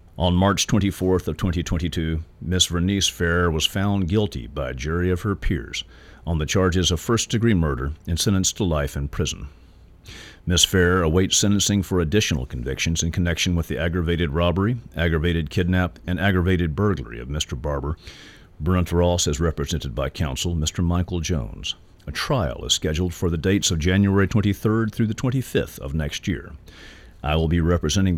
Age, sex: 50-69, male